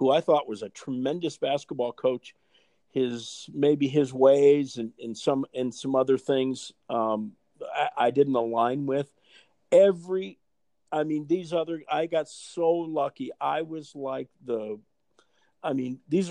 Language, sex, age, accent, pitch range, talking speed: English, male, 50-69, American, 115-140 Hz, 150 wpm